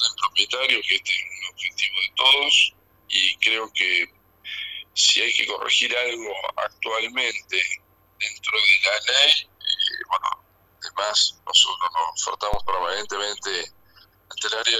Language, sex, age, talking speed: Spanish, male, 50-69, 120 wpm